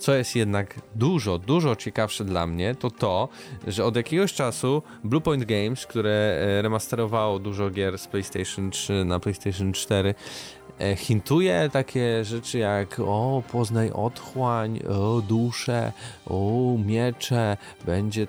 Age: 20-39